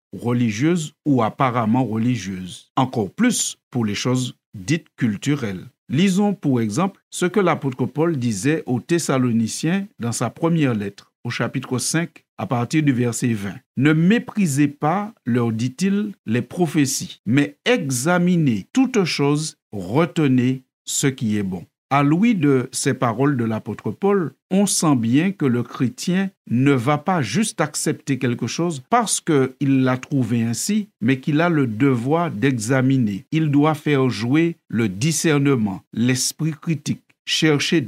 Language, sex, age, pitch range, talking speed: French, male, 50-69, 125-165 Hz, 145 wpm